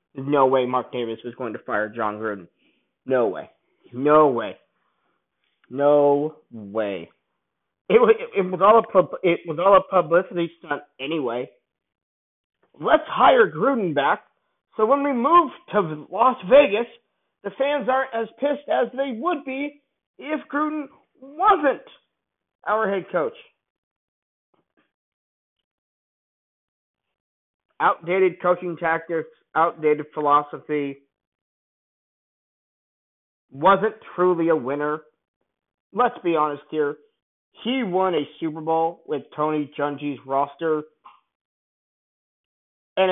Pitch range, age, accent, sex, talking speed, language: 145-215 Hz, 40-59, American, male, 100 wpm, English